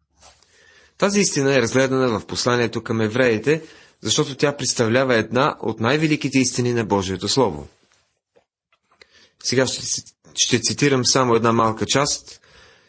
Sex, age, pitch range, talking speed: male, 30-49, 105-140 Hz, 120 wpm